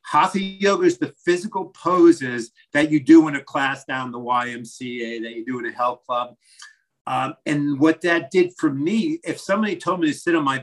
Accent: American